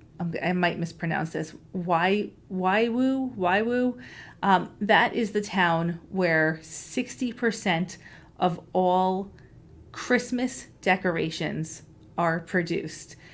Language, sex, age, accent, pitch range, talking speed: English, female, 30-49, American, 170-210 Hz, 100 wpm